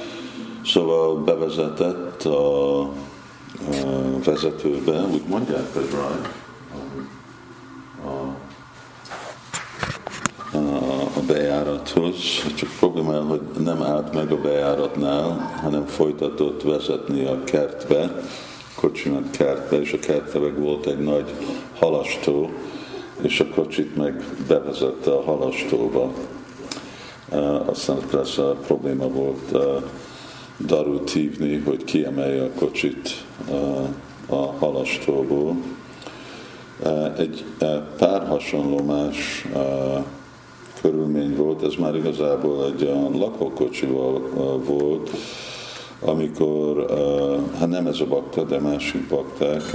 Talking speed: 95 wpm